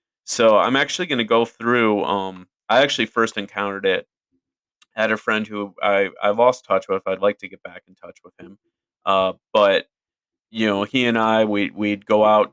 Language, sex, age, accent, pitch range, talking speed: English, male, 30-49, American, 95-110 Hz, 200 wpm